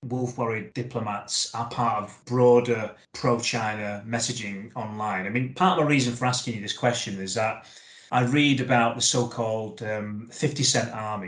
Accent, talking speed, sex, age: British, 165 wpm, male, 30-49